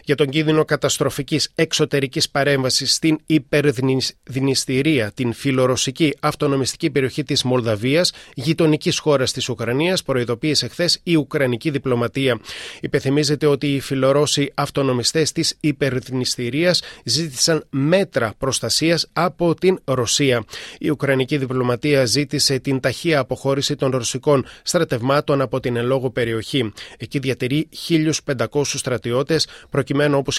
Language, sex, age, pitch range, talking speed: Greek, male, 30-49, 125-155 Hz, 110 wpm